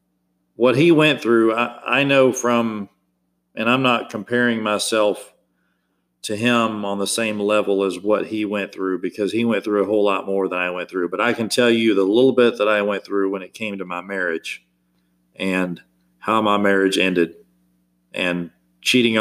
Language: English